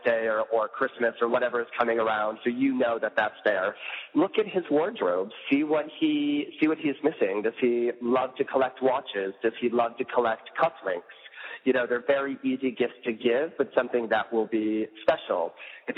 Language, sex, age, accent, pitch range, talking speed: English, male, 30-49, American, 115-140 Hz, 200 wpm